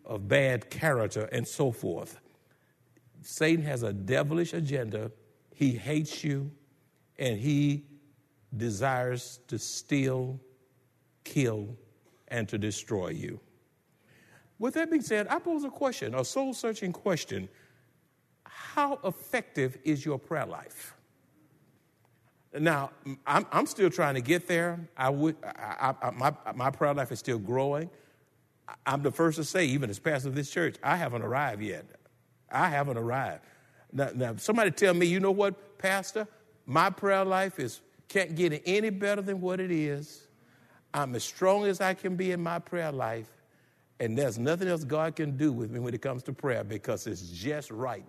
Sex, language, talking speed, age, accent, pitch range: male, English, 155 wpm, 50-69, American, 125-170 Hz